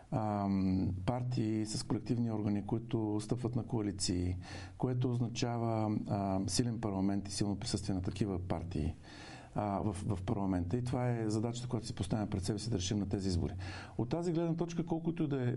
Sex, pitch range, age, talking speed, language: male, 100-135 Hz, 50-69, 160 wpm, Bulgarian